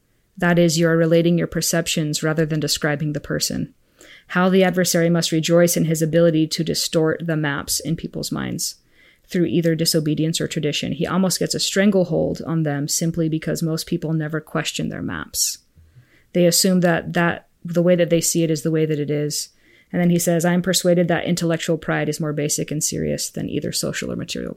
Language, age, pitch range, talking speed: English, 20-39, 155-170 Hz, 200 wpm